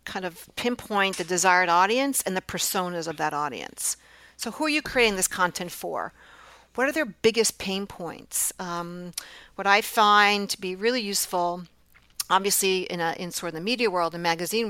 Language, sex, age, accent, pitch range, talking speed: English, female, 50-69, American, 175-210 Hz, 185 wpm